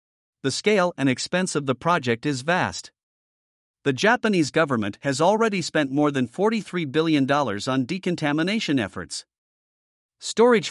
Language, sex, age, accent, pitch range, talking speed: English, male, 50-69, American, 135-175 Hz, 130 wpm